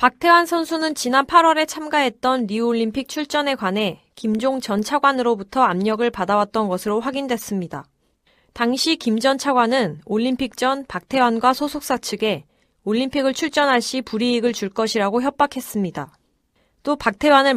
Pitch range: 210-275 Hz